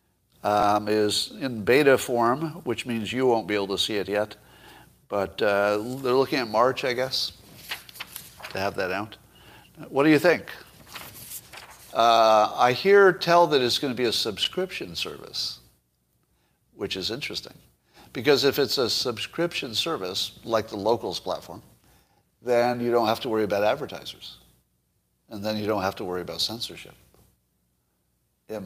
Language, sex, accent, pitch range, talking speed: English, male, American, 85-130 Hz, 155 wpm